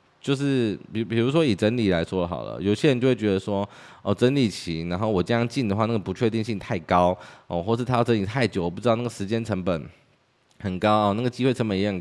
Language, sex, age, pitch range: Chinese, male, 20-39, 95-120 Hz